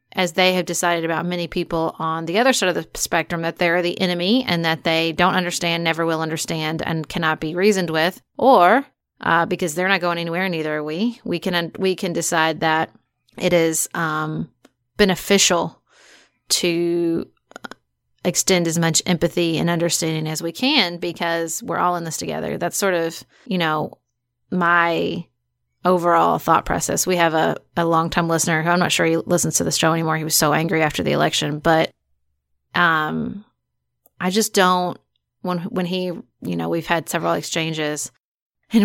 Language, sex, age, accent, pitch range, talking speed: English, female, 30-49, American, 160-180 Hz, 180 wpm